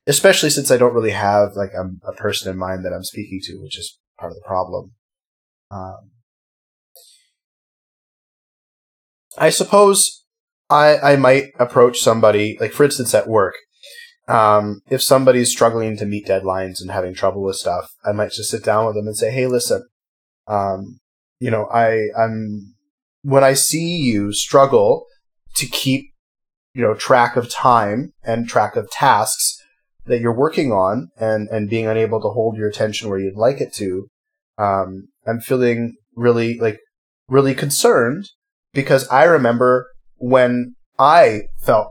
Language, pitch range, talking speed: English, 105-140 Hz, 155 wpm